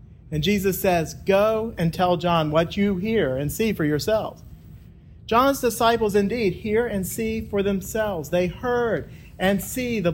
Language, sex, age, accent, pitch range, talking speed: English, male, 40-59, American, 145-200 Hz, 160 wpm